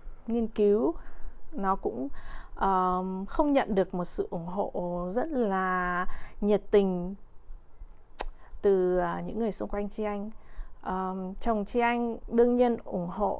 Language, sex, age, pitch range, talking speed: Vietnamese, female, 20-39, 185-230 Hz, 140 wpm